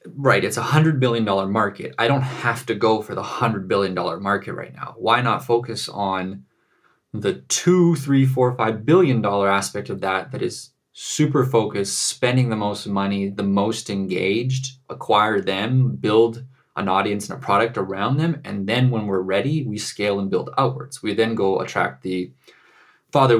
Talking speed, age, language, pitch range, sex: 180 wpm, 20-39, English, 100-125 Hz, male